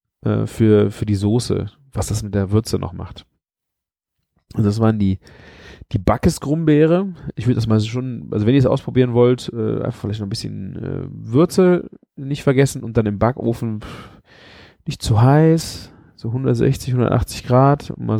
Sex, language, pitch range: male, German, 110-140 Hz